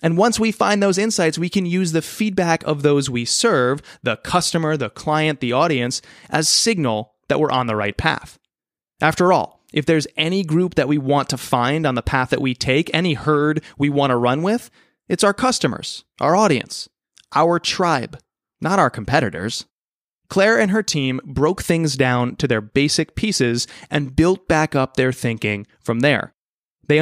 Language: English